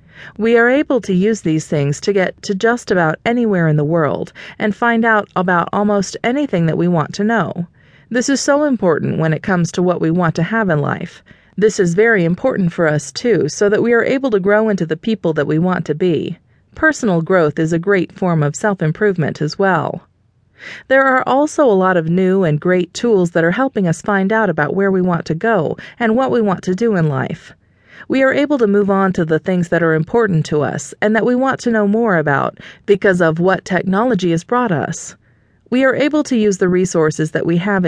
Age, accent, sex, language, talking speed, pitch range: 40-59, American, female, English, 225 wpm, 165-220 Hz